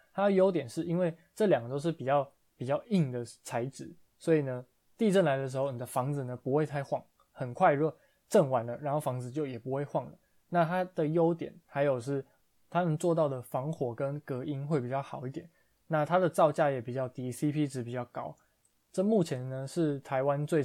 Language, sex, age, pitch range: Chinese, male, 20-39, 130-165 Hz